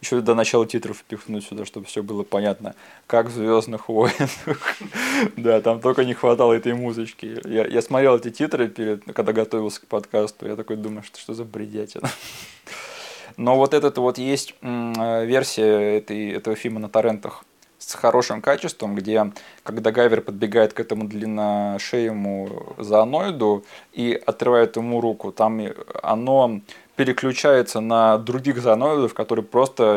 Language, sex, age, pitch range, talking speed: Russian, male, 20-39, 105-120 Hz, 145 wpm